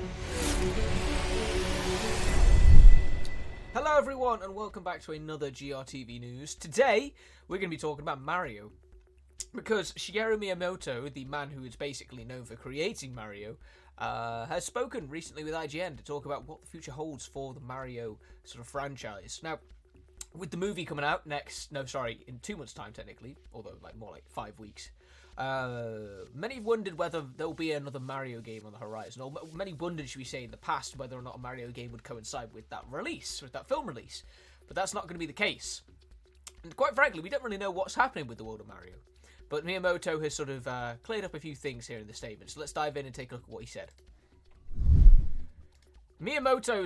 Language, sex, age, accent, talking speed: Italian, male, 20-39, British, 200 wpm